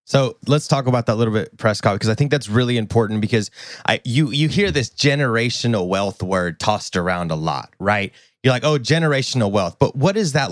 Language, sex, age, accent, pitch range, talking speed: English, male, 30-49, American, 110-145 Hz, 215 wpm